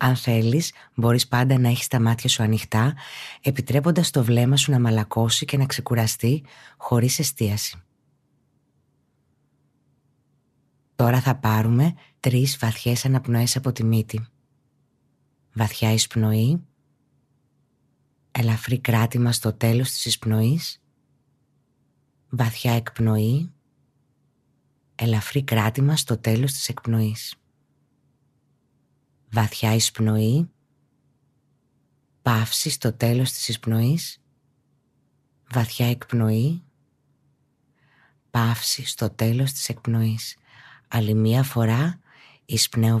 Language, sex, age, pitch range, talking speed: Greek, female, 20-39, 115-140 Hz, 90 wpm